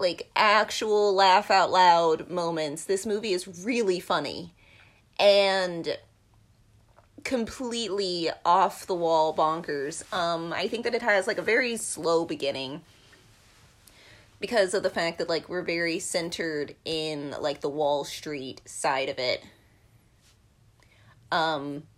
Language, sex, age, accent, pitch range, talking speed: English, female, 30-49, American, 115-190 Hz, 115 wpm